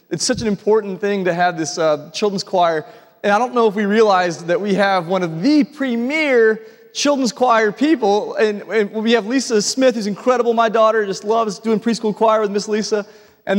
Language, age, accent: English, 30-49, American